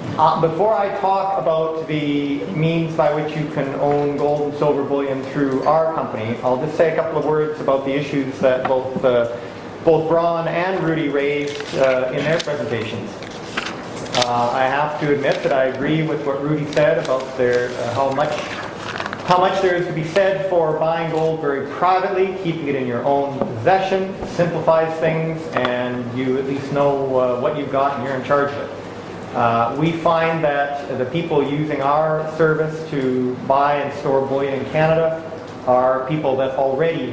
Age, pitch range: 40-59, 130-160 Hz